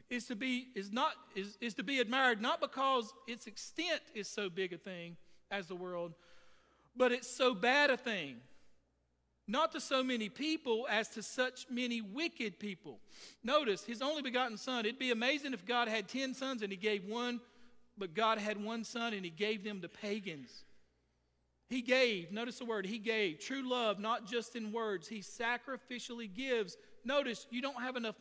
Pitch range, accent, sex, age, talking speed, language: 190-250 Hz, American, male, 50-69, 175 wpm, English